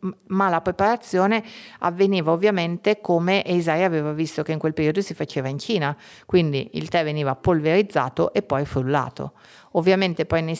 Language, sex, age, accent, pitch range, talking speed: Italian, female, 50-69, native, 150-185 Hz, 160 wpm